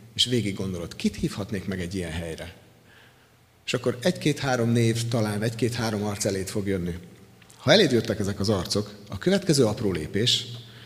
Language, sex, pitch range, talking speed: Hungarian, male, 105-135 Hz, 160 wpm